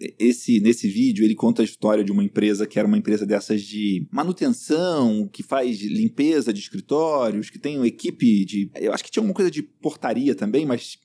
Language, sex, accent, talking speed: Portuguese, male, Brazilian, 200 wpm